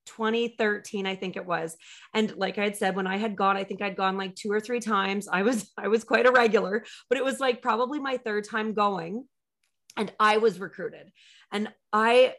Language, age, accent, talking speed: English, 30-49, American, 220 wpm